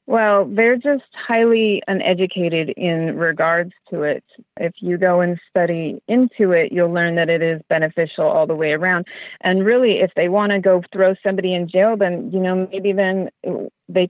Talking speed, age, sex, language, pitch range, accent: 185 wpm, 30-49, female, English, 170-205 Hz, American